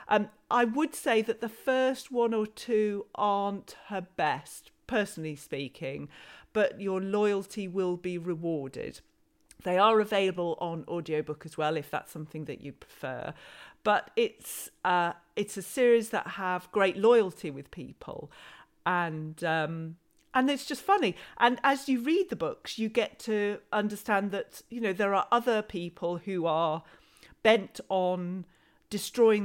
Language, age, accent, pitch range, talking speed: English, 40-59, British, 170-230 Hz, 150 wpm